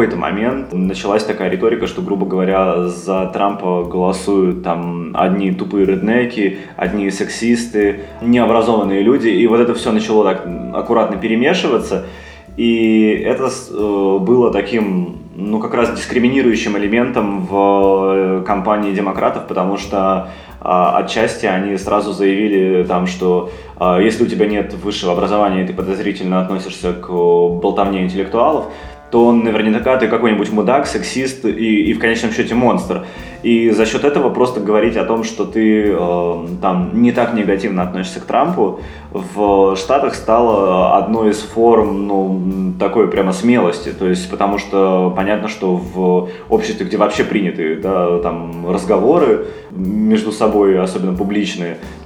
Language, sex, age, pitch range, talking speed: Russian, male, 20-39, 90-110 Hz, 135 wpm